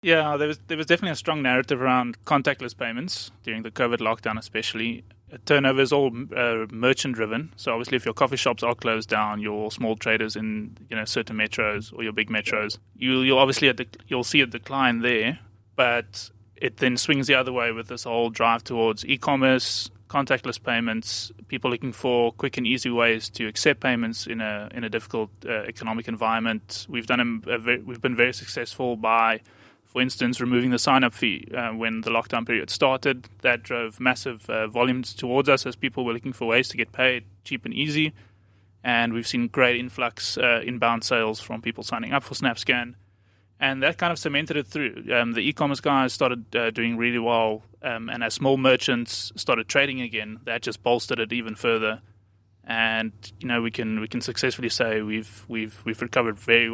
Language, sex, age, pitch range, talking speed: English, male, 20-39, 110-130 Hz, 195 wpm